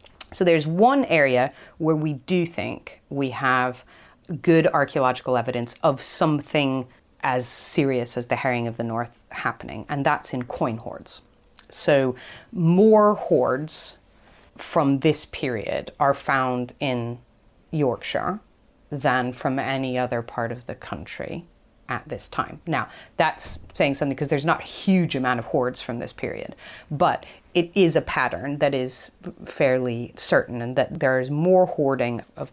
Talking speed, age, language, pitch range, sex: 150 wpm, 30-49, English, 125-160 Hz, female